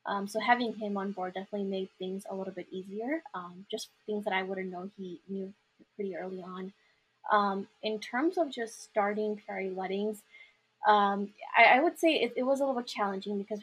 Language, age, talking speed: English, 20-39, 205 wpm